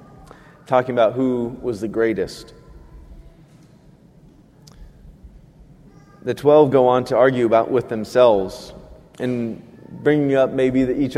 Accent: American